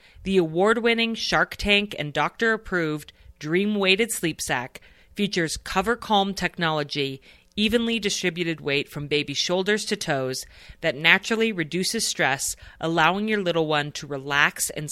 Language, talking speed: English, 140 wpm